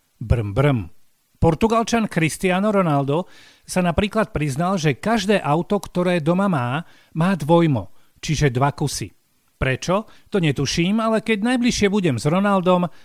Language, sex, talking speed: Slovak, male, 130 wpm